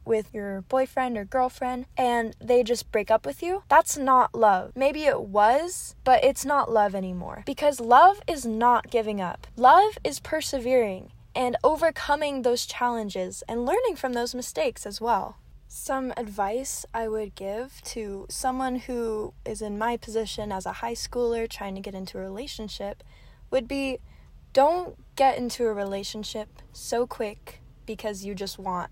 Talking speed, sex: 160 wpm, female